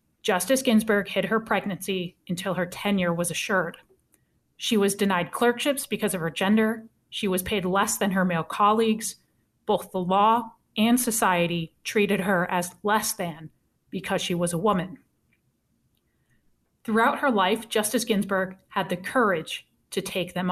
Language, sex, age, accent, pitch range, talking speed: English, female, 30-49, American, 180-230 Hz, 150 wpm